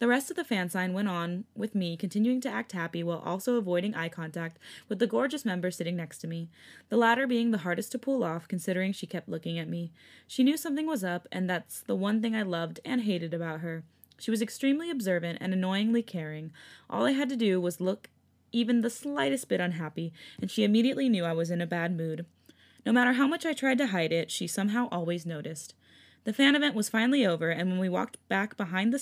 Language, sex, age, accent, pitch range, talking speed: English, female, 20-39, American, 170-235 Hz, 230 wpm